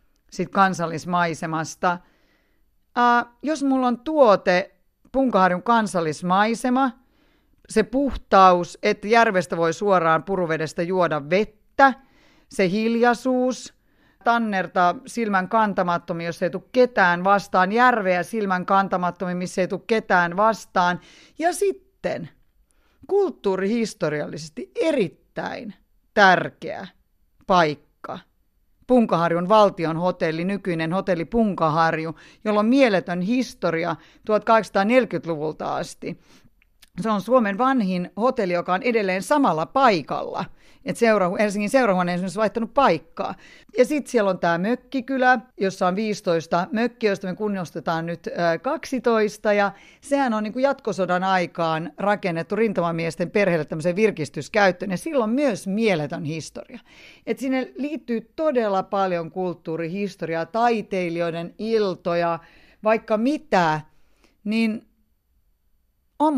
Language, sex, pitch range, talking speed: Finnish, female, 175-240 Hz, 105 wpm